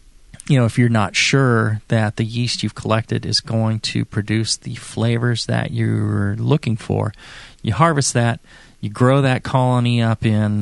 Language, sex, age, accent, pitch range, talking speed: English, male, 30-49, American, 105-120 Hz, 170 wpm